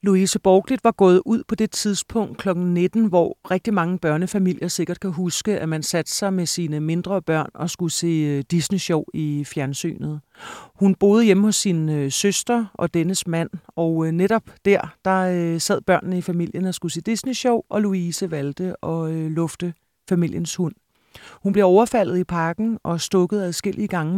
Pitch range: 165-205 Hz